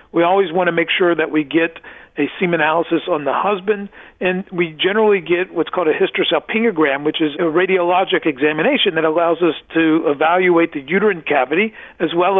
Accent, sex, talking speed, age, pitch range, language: American, male, 185 wpm, 50-69, 155-210 Hz, English